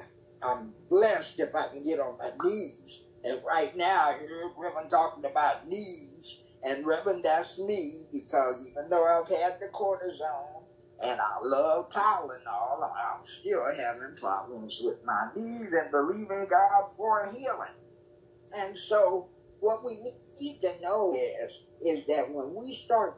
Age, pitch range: 50-69, 165-235 Hz